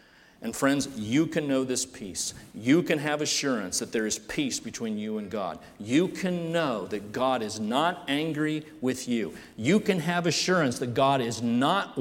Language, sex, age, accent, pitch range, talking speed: English, male, 40-59, American, 120-160 Hz, 185 wpm